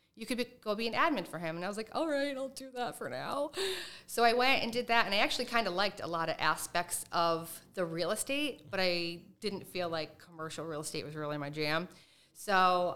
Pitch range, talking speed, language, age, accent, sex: 165-200 Hz, 240 wpm, English, 30-49, American, female